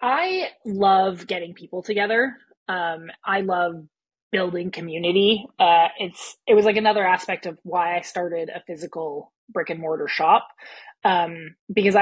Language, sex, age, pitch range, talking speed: English, female, 20-39, 165-195 Hz, 145 wpm